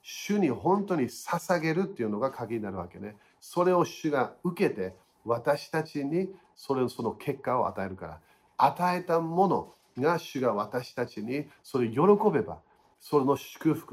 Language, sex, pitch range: Japanese, male, 115-155 Hz